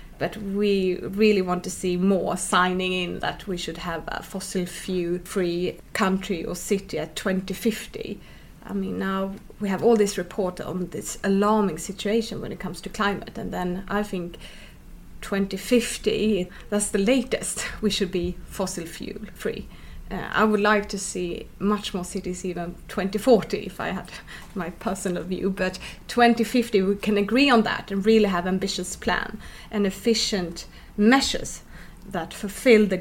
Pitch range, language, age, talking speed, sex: 180-210 Hz, English, 30-49, 160 wpm, female